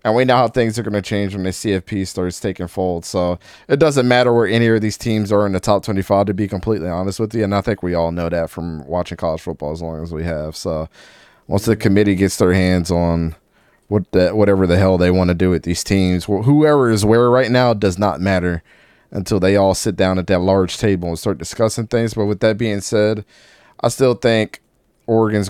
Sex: male